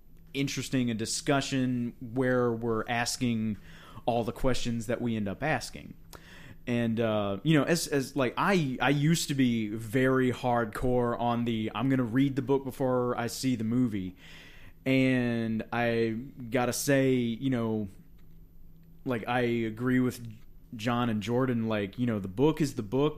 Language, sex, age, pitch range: English, male, 30-49, 110-135 Hz